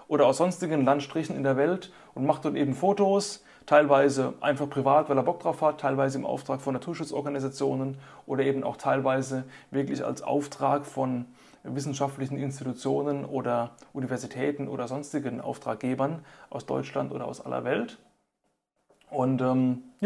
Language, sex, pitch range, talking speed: German, male, 135-160 Hz, 145 wpm